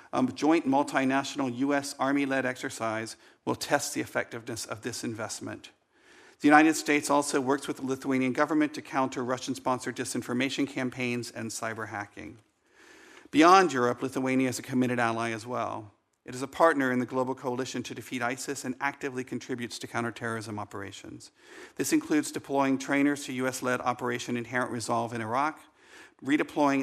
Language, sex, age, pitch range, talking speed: English, male, 40-59, 120-140 Hz, 150 wpm